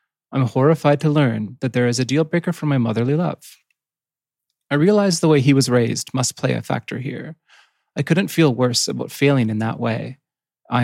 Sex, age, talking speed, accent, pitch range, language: male, 30-49, 195 wpm, American, 120-150 Hz, English